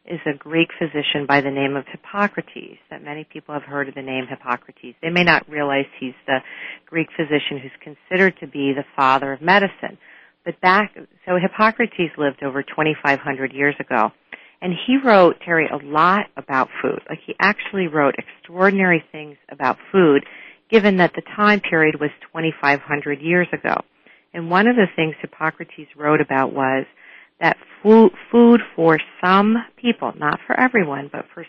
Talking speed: 165 wpm